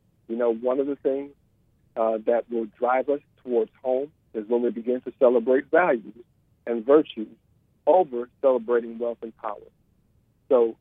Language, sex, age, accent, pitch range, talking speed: English, male, 50-69, American, 115-130 Hz, 155 wpm